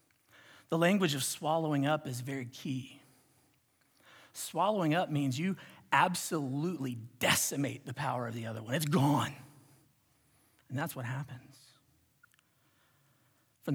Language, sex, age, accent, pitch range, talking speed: English, male, 40-59, American, 140-175 Hz, 120 wpm